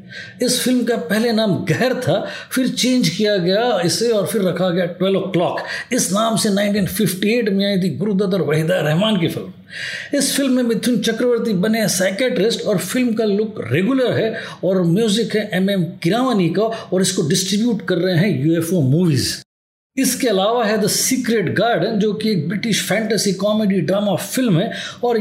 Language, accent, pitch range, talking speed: Hindi, native, 180-220 Hz, 180 wpm